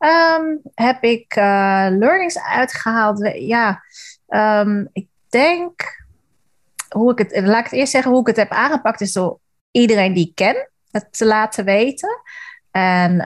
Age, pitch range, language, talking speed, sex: 30-49, 170-210 Hz, Dutch, 160 wpm, female